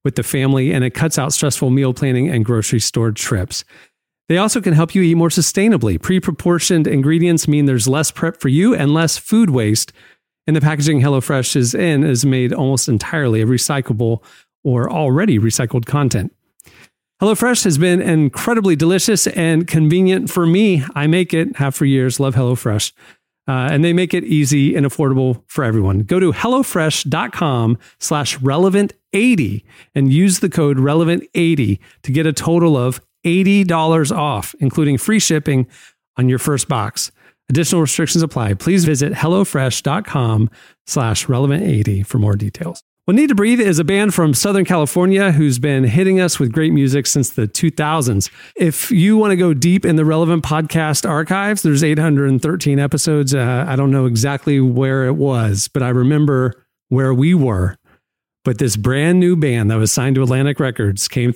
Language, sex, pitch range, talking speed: English, male, 130-170 Hz, 170 wpm